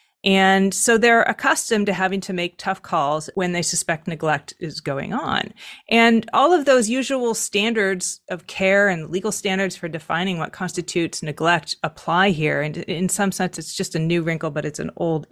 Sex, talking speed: female, 190 wpm